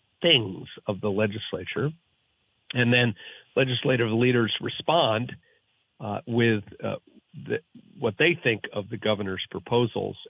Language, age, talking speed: English, 50-69, 110 wpm